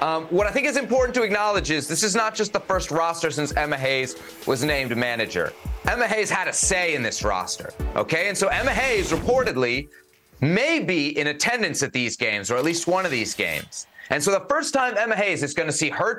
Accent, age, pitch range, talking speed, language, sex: American, 30-49, 140-200 Hz, 230 wpm, English, male